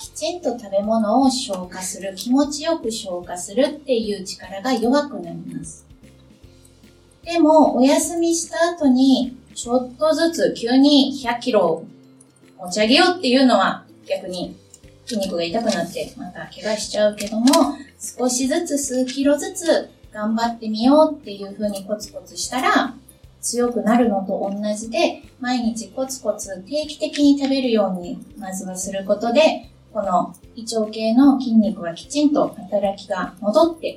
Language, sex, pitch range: Japanese, female, 195-285 Hz